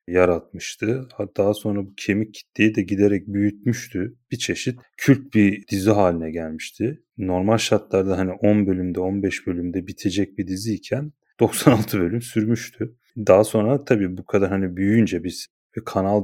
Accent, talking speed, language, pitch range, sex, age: native, 145 wpm, Turkish, 90-110 Hz, male, 30-49